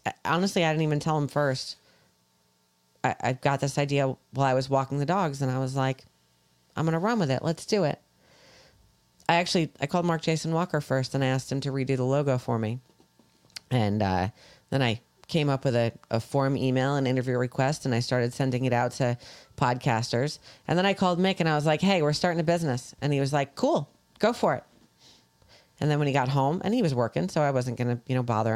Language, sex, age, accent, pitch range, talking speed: English, female, 30-49, American, 130-165 Hz, 235 wpm